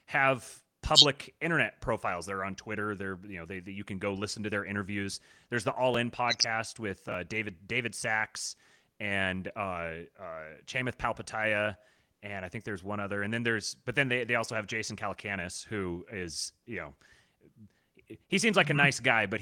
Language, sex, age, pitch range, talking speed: English, male, 30-49, 100-130 Hz, 190 wpm